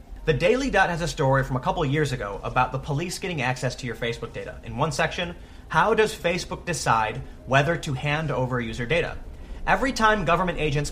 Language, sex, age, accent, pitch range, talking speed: English, male, 30-49, American, 130-175 Hz, 205 wpm